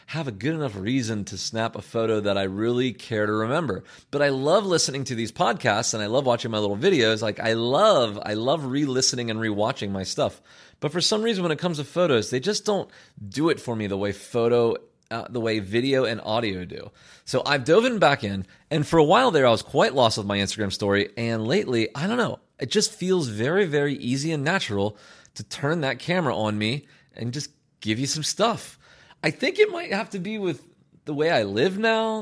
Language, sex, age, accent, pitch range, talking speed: English, male, 30-49, American, 115-175 Hz, 225 wpm